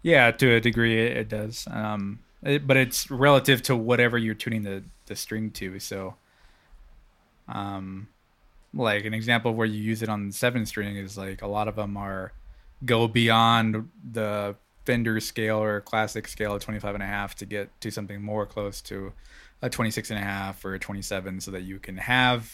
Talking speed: 190 wpm